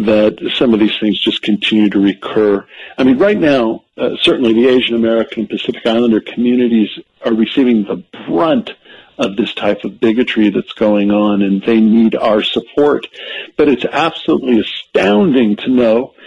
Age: 50-69